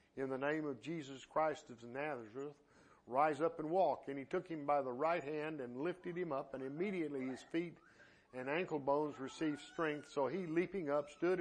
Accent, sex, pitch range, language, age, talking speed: American, male, 145-175 Hz, English, 50-69, 200 wpm